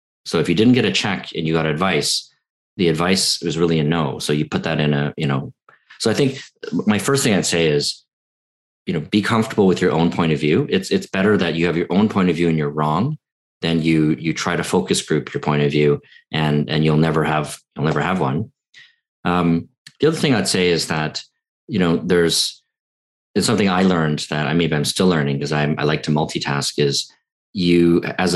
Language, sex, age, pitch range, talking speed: English, male, 40-59, 75-85 Hz, 230 wpm